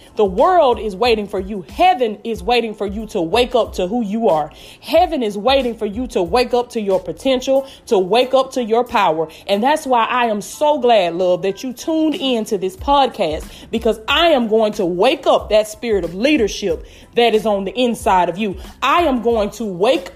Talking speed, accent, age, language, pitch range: 215 wpm, American, 20-39, English, 195-255 Hz